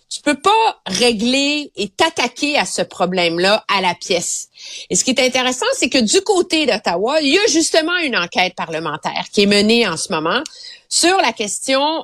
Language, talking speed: French, 190 wpm